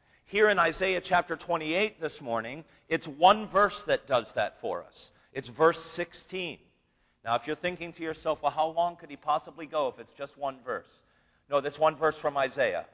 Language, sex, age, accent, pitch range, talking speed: English, male, 50-69, American, 145-180 Hz, 195 wpm